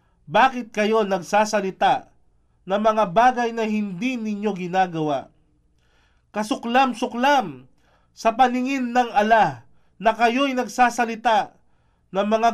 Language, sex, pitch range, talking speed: Filipino, male, 165-235 Hz, 95 wpm